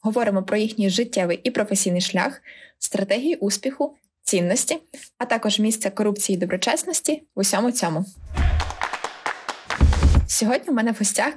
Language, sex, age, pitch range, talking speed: Ukrainian, female, 20-39, 195-230 Hz, 125 wpm